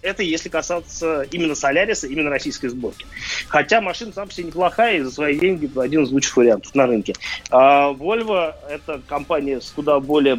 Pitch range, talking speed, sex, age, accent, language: 130-160 Hz, 195 wpm, male, 30-49, native, Russian